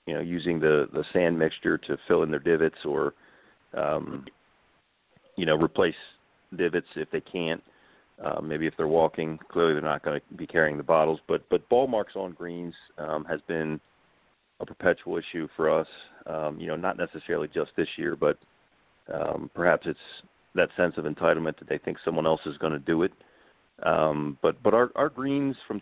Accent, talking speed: American, 190 wpm